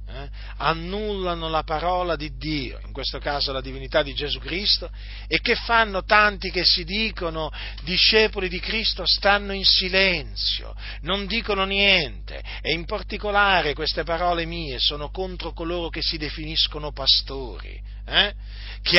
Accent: native